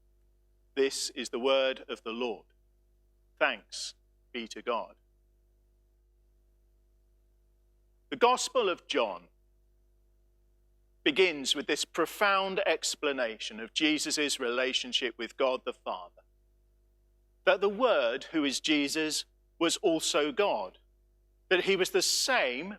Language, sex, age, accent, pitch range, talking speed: English, male, 40-59, British, 145-235 Hz, 110 wpm